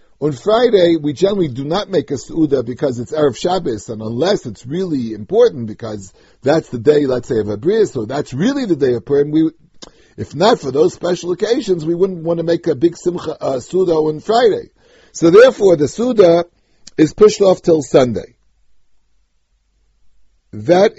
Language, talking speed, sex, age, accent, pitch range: English, 175 wpm, male, 60-79, American, 125-175 Hz